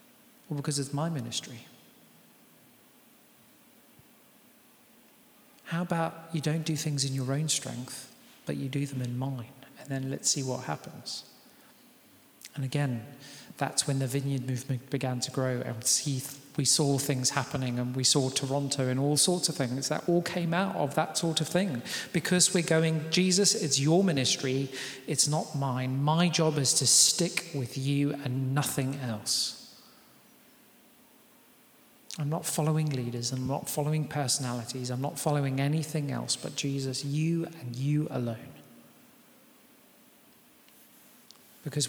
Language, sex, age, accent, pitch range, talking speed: English, male, 40-59, British, 130-165 Hz, 140 wpm